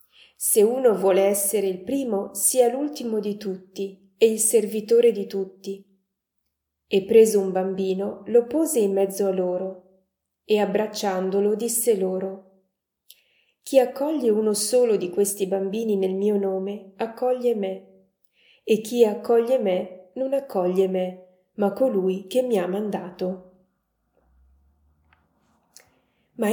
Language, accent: Italian, native